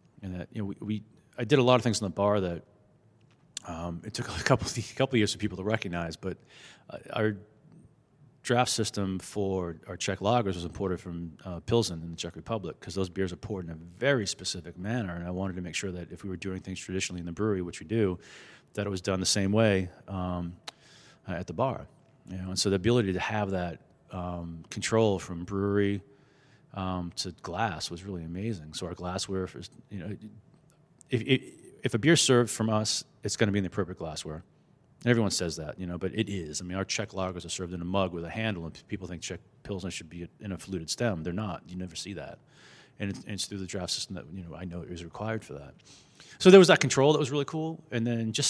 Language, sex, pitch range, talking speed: English, male, 90-115 Hz, 240 wpm